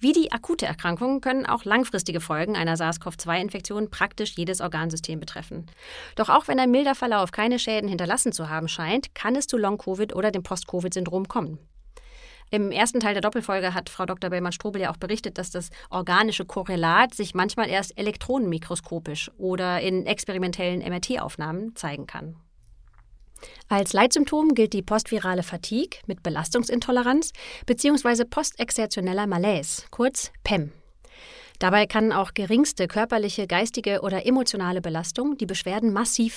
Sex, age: female, 30-49